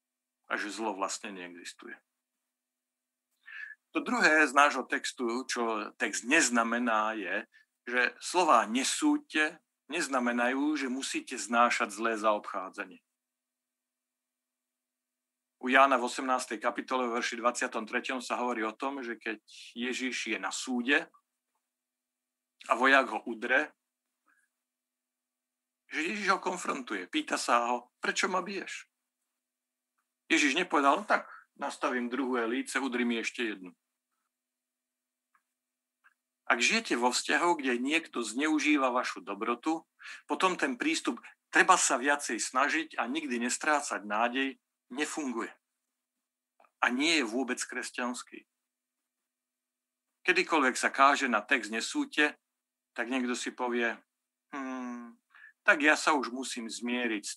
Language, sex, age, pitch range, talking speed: Slovak, male, 50-69, 120-160 Hz, 115 wpm